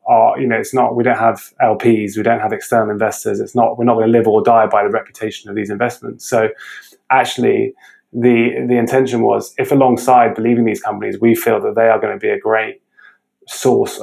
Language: English